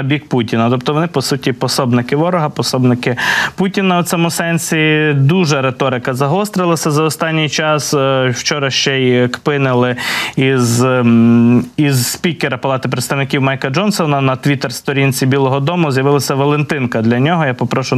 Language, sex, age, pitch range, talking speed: Ukrainian, male, 20-39, 125-150 Hz, 135 wpm